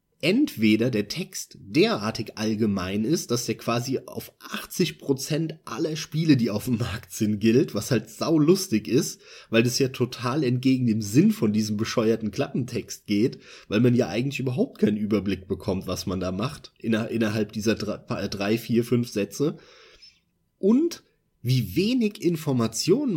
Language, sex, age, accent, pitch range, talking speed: German, male, 30-49, German, 110-155 Hz, 155 wpm